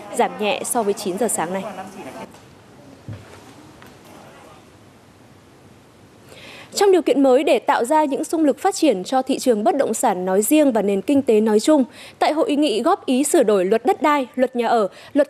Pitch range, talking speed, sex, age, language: 250-345 Hz, 190 wpm, female, 20-39, Vietnamese